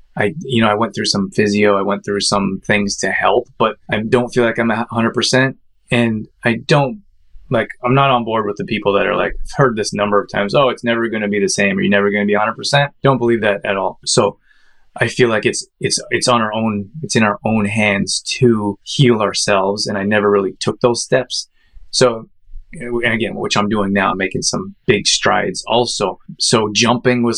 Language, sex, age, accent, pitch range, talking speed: English, male, 20-39, American, 105-125 Hz, 230 wpm